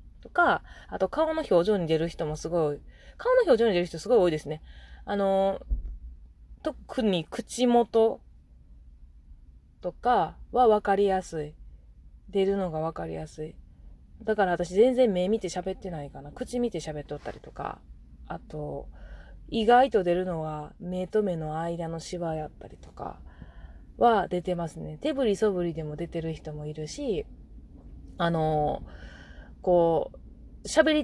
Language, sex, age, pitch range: Japanese, female, 20-39, 150-225 Hz